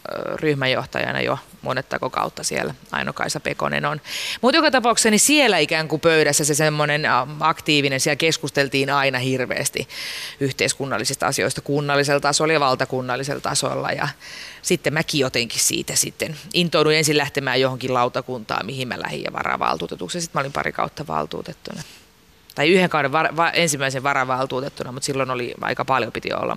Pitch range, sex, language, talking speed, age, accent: 135-175 Hz, female, Finnish, 140 wpm, 30-49, native